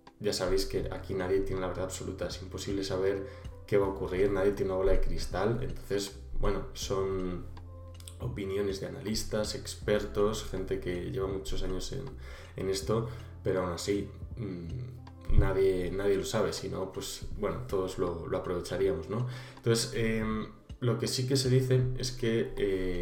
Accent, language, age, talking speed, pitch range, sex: Spanish, Spanish, 20-39, 165 wpm, 95-115 Hz, male